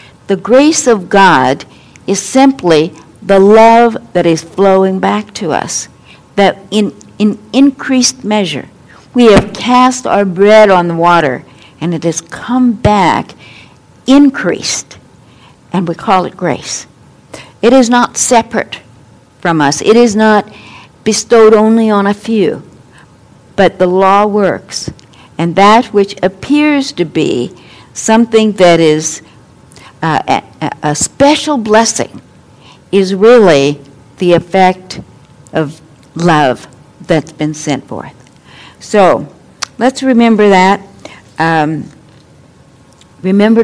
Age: 60-79